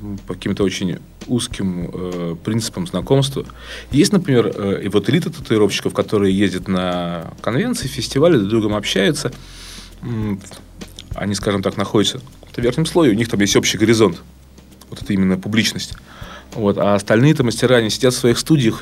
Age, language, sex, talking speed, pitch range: 30-49, Russian, male, 165 wpm, 90-110 Hz